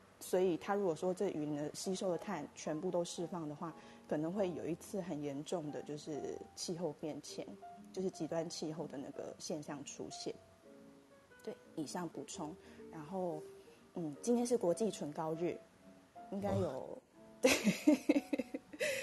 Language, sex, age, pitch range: Chinese, female, 20-39, 160-215 Hz